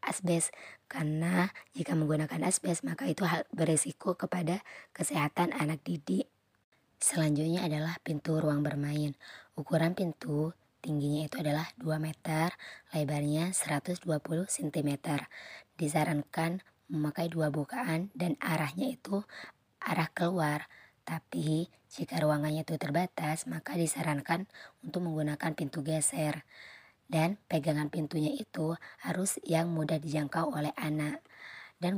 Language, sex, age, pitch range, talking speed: Indonesian, male, 20-39, 150-170 Hz, 110 wpm